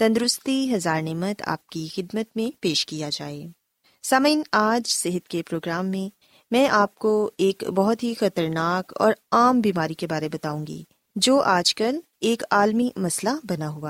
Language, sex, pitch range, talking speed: Urdu, female, 175-250 Hz, 165 wpm